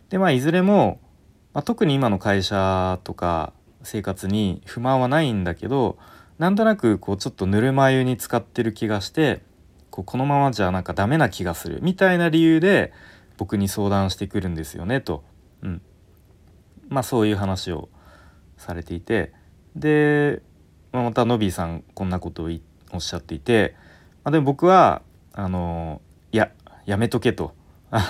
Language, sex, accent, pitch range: Japanese, male, native, 85-125 Hz